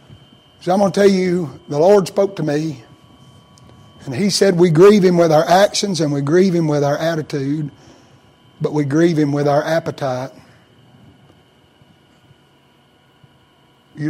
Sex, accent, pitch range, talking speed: male, American, 140-175 Hz, 150 wpm